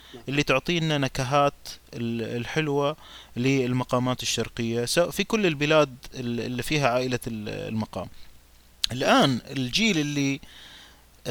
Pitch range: 125-170 Hz